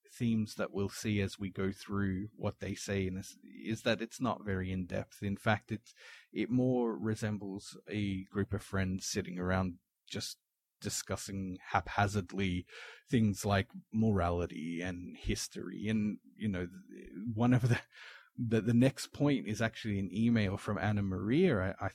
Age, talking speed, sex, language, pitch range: 30-49, 160 wpm, male, English, 95-115 Hz